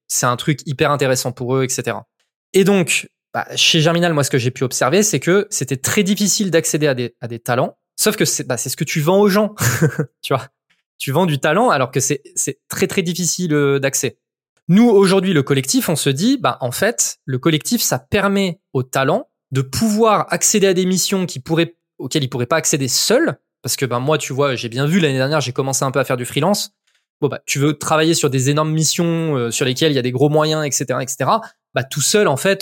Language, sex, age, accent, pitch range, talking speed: French, male, 20-39, French, 135-185 Hz, 240 wpm